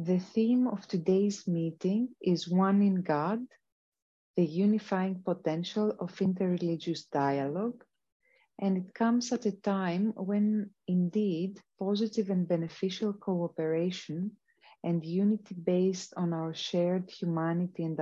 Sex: female